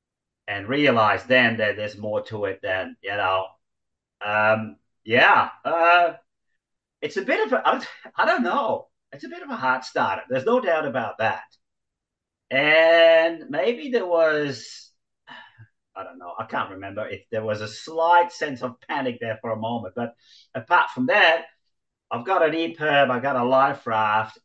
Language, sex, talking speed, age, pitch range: English, male, 170 wpm, 40-59, 115-160 Hz